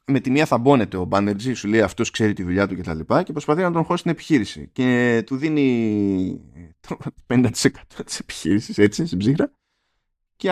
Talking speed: 175 wpm